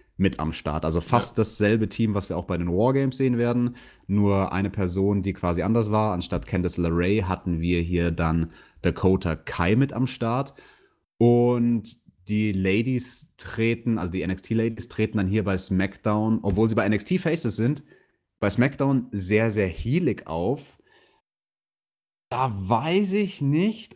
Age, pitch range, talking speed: 30-49, 95-120 Hz, 155 wpm